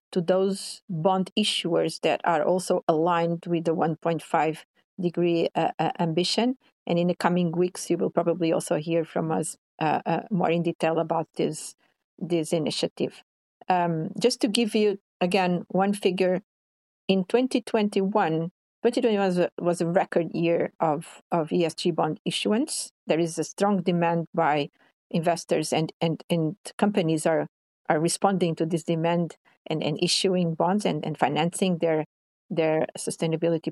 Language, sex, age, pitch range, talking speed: English, female, 50-69, 165-200 Hz, 150 wpm